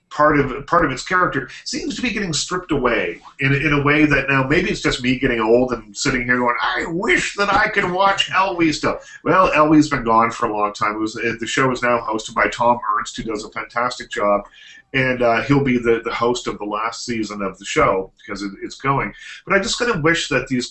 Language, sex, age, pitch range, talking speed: English, male, 40-59, 110-150 Hz, 245 wpm